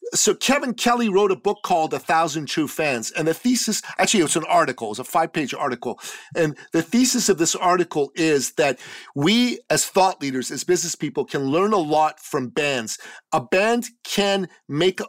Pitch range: 155-195 Hz